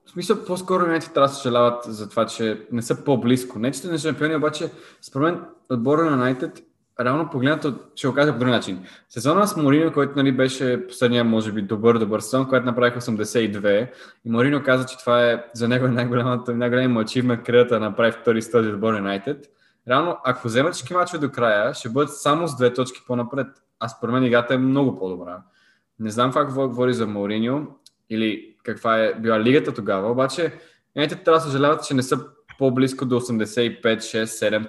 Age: 20-39